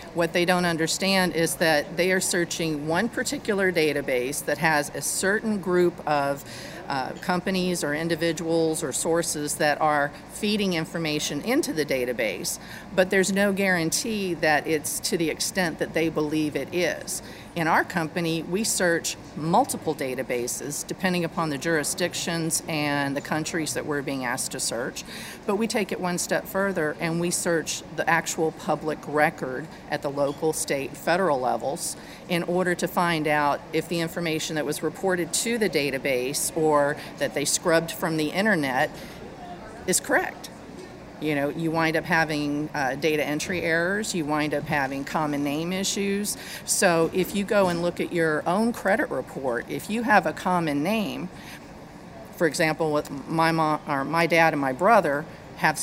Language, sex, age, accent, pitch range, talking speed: English, female, 50-69, American, 150-180 Hz, 165 wpm